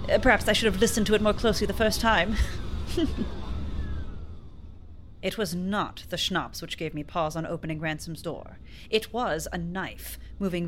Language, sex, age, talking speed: English, female, 30-49, 170 wpm